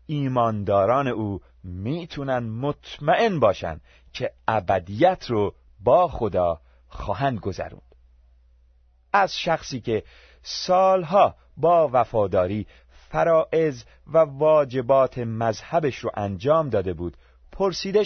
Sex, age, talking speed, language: male, 40-59, 90 wpm, Persian